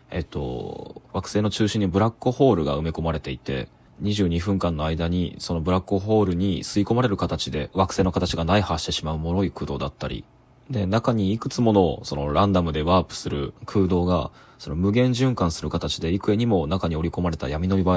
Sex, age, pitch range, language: male, 20-39, 80-105 Hz, Japanese